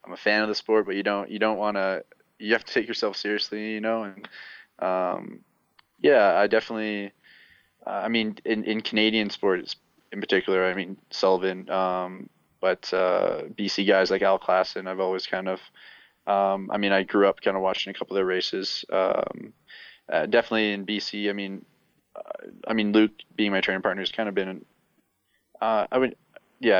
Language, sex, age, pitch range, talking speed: English, male, 20-39, 95-105 Hz, 195 wpm